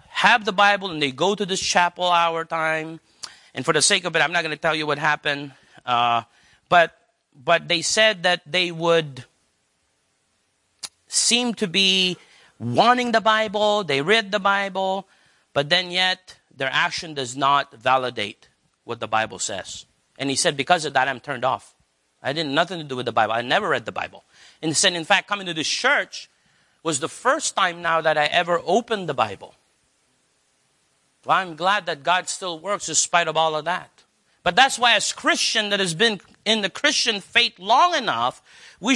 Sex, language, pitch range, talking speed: male, English, 150-210 Hz, 195 wpm